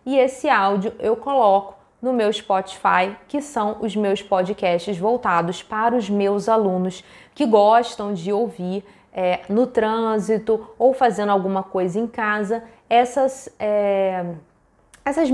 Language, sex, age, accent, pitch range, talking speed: Portuguese, female, 20-39, Brazilian, 190-235 Hz, 125 wpm